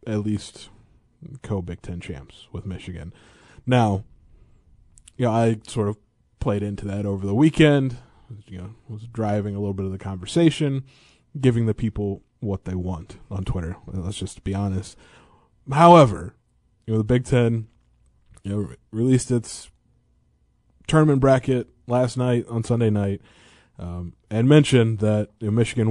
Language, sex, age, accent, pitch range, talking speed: English, male, 20-39, American, 100-120 Hz, 155 wpm